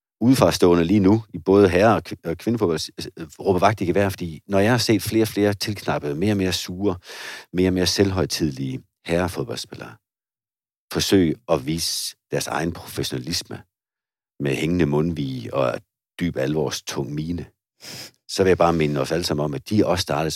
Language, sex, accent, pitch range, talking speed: Danish, male, native, 85-105 Hz, 165 wpm